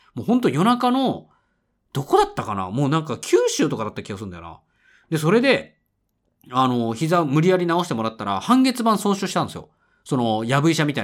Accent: native